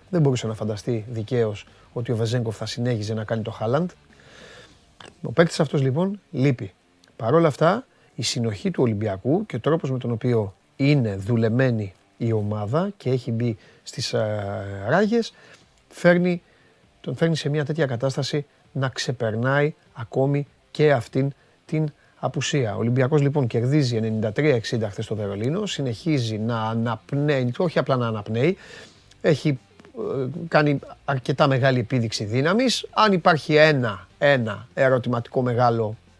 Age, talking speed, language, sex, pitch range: 30-49, 135 wpm, Greek, male, 115-155 Hz